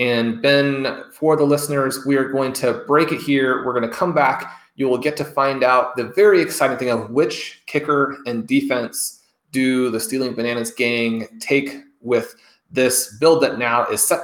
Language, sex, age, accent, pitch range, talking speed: English, male, 30-49, American, 120-145 Hz, 190 wpm